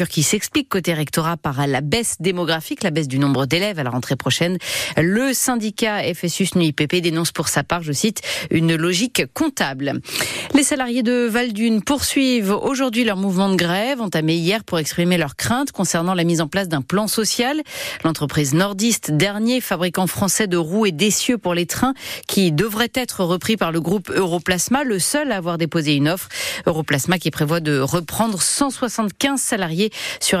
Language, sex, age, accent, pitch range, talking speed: French, female, 40-59, French, 165-240 Hz, 180 wpm